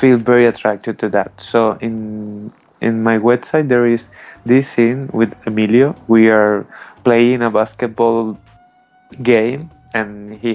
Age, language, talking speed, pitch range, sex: 20-39, English, 140 wpm, 105-120 Hz, male